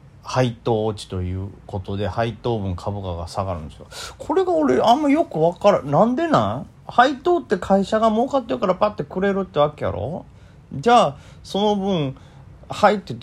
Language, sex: Japanese, male